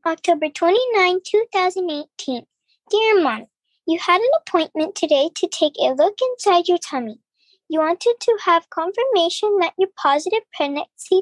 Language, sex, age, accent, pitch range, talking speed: English, male, 10-29, American, 325-410 Hz, 140 wpm